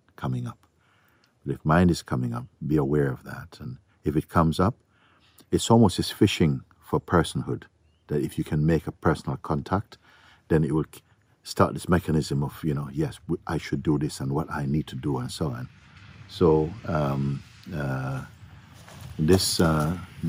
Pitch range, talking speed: 70-95 Hz, 175 wpm